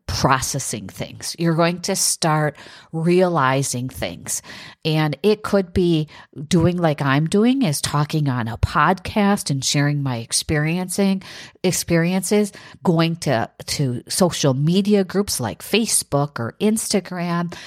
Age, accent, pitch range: 50-69, American, 135-185 Hz